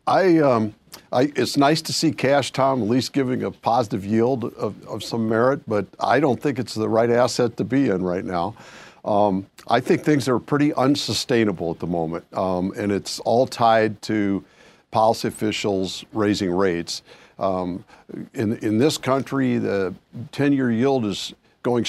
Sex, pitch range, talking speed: male, 105-130 Hz, 165 wpm